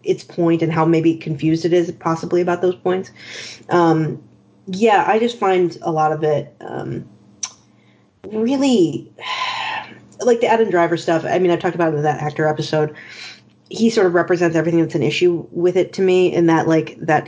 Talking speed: 190 wpm